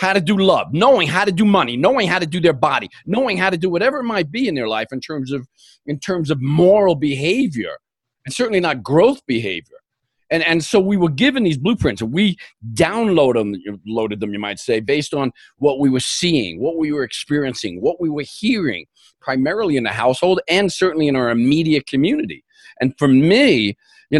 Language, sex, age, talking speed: English, male, 40-59, 205 wpm